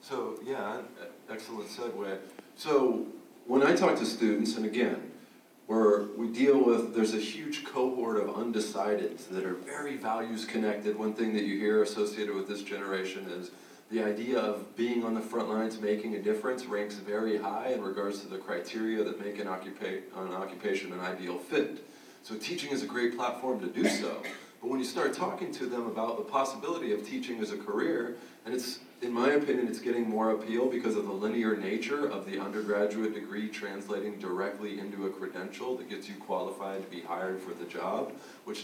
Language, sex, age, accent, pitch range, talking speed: English, male, 40-59, American, 100-120 Hz, 190 wpm